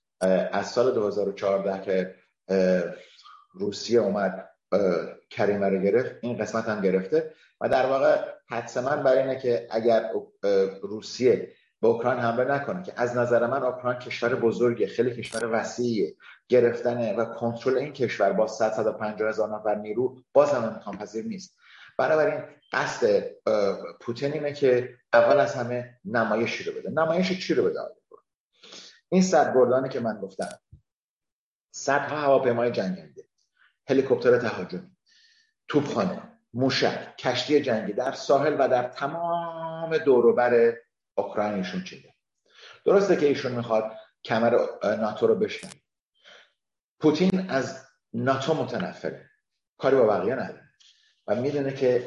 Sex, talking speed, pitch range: male, 130 wpm, 120-195 Hz